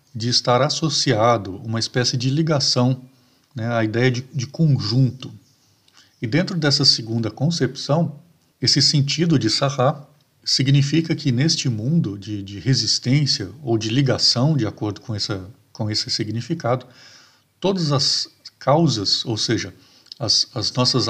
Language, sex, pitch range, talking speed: Portuguese, male, 115-140 Hz, 130 wpm